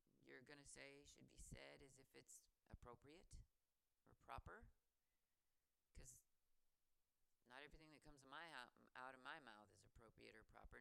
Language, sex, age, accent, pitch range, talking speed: English, female, 30-49, American, 115-155 Hz, 145 wpm